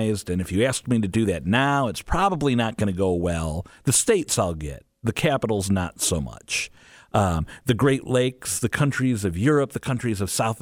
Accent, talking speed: American, 210 wpm